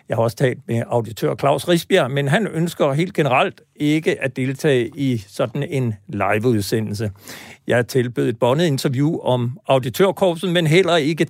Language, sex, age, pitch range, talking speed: Danish, male, 60-79, 125-170 Hz, 165 wpm